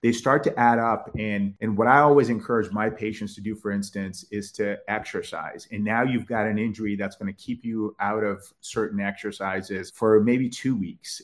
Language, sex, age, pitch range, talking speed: English, male, 30-49, 100-120 Hz, 210 wpm